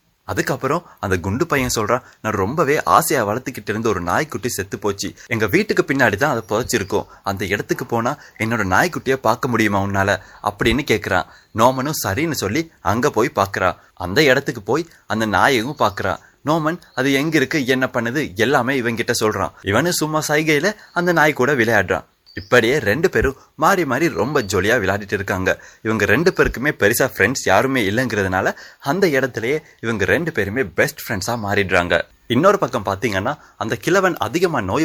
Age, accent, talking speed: 30-49, native, 150 wpm